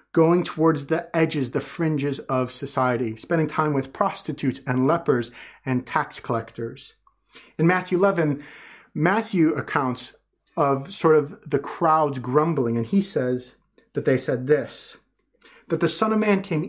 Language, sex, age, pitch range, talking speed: English, male, 30-49, 125-170 Hz, 145 wpm